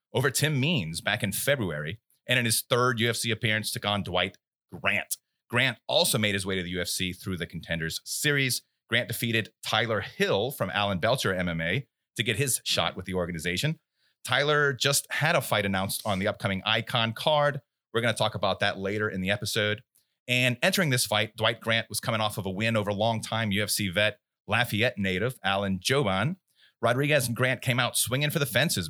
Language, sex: English, male